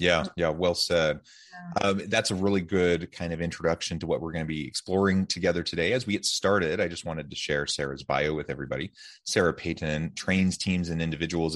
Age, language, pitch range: 30-49, English, 80-95 Hz